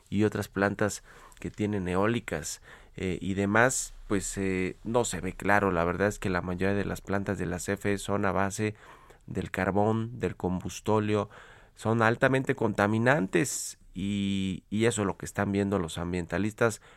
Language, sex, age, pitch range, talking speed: Spanish, male, 30-49, 95-115 Hz, 165 wpm